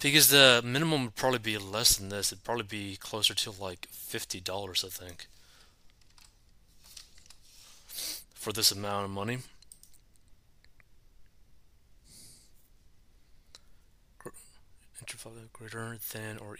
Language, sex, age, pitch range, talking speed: English, male, 30-49, 100-125 Hz, 95 wpm